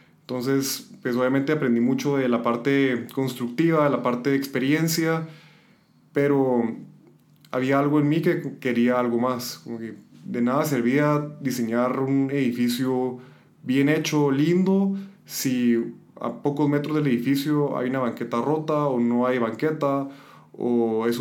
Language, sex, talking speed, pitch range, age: Spanish, male, 140 wpm, 120-145 Hz, 20-39